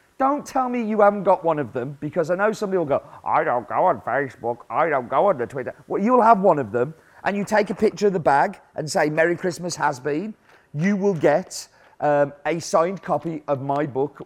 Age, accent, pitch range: 40-59, British, 130-190 Hz